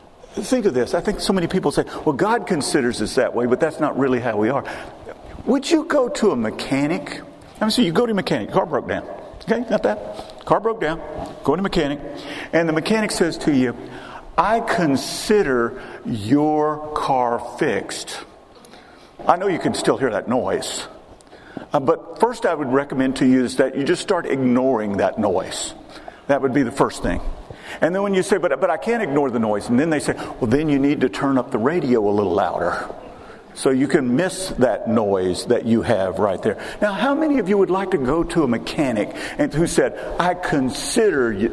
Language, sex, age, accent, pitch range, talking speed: English, male, 50-69, American, 145-215 Hz, 210 wpm